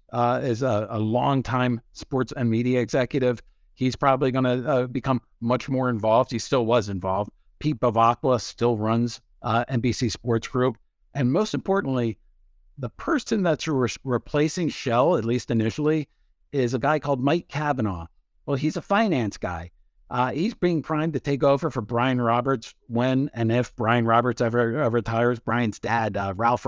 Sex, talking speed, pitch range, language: male, 165 wpm, 115-135 Hz, English